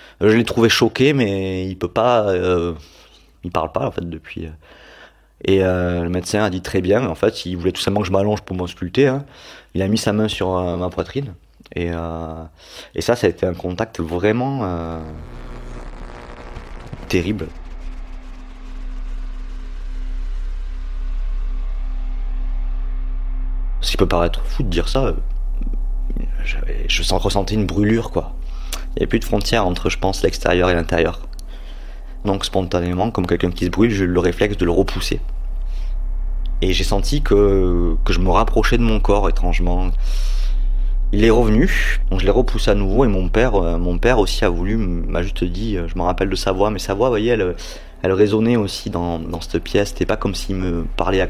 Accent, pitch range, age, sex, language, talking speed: French, 80-100 Hz, 30-49, male, French, 180 wpm